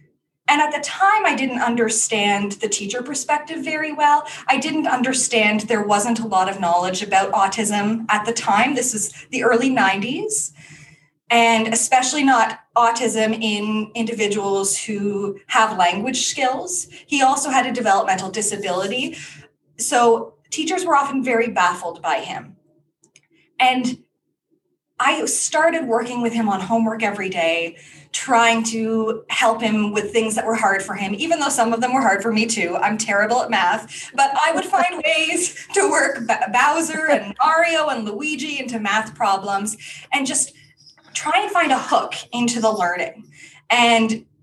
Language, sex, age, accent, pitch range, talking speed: English, female, 20-39, American, 210-280 Hz, 155 wpm